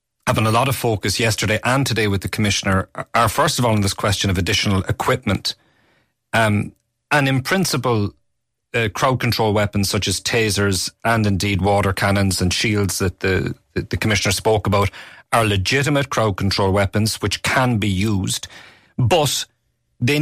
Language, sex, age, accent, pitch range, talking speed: English, male, 30-49, Irish, 105-130 Hz, 165 wpm